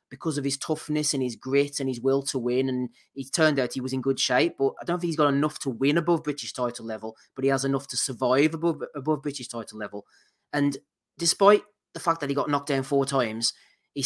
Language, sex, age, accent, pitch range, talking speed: English, male, 30-49, British, 130-160 Hz, 245 wpm